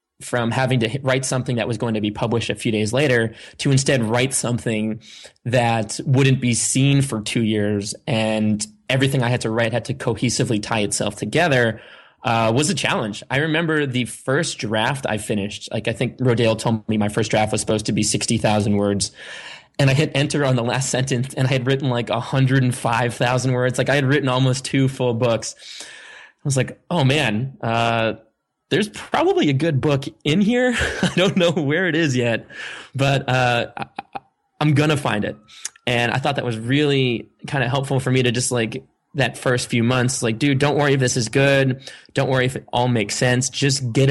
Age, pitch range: 20-39, 115-135 Hz